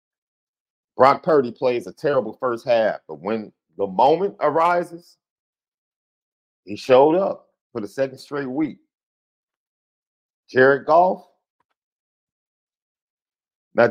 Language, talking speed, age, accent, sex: English, 100 wpm, 50-69, American, male